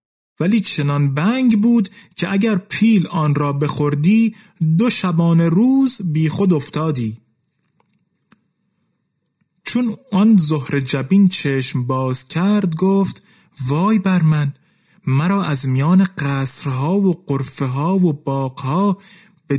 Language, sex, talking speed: Persian, male, 105 wpm